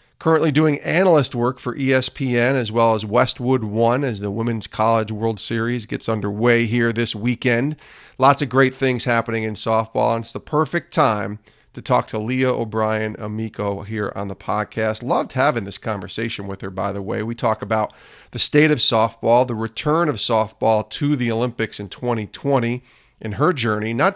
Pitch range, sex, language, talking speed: 105-130 Hz, male, English, 180 wpm